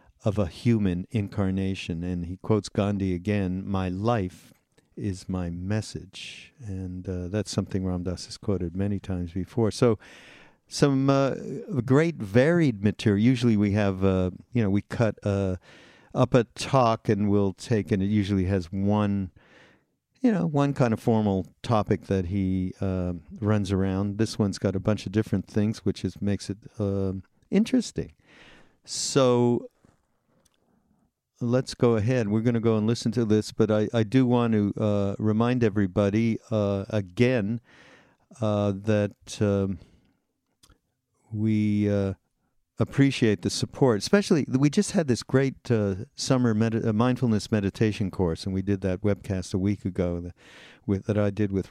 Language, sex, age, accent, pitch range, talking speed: English, male, 50-69, American, 95-115 Hz, 150 wpm